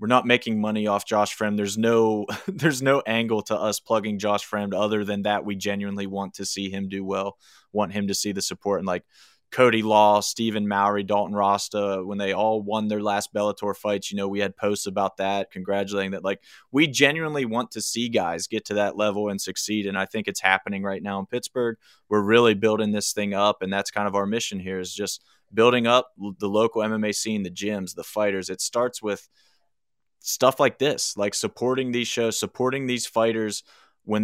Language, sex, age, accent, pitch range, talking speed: English, male, 20-39, American, 100-110 Hz, 210 wpm